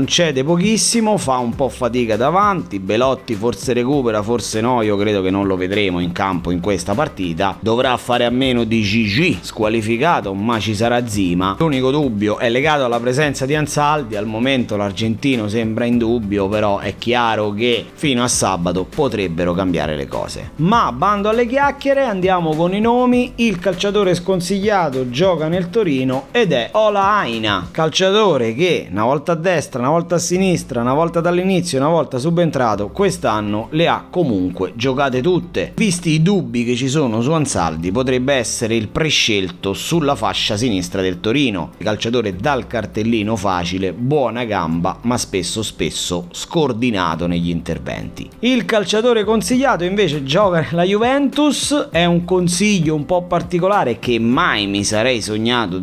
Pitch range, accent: 105-175 Hz, native